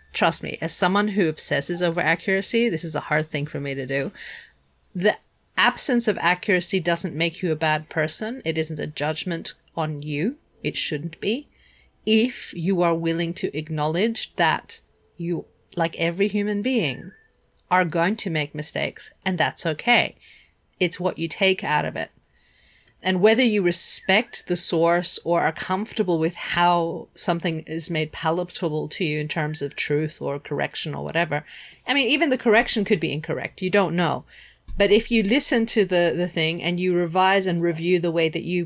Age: 30-49